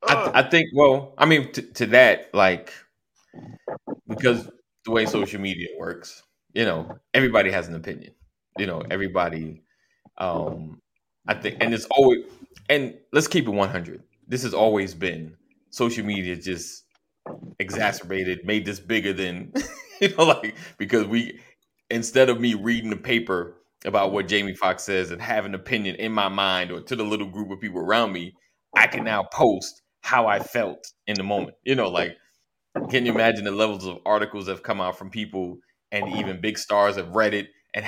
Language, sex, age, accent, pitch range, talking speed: English, male, 20-39, American, 95-120 Hz, 180 wpm